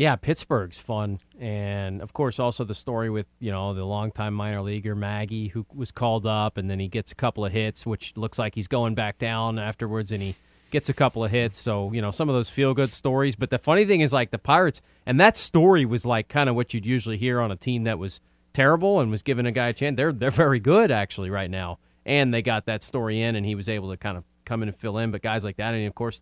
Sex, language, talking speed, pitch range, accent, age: male, English, 270 wpm, 105-135 Hz, American, 30-49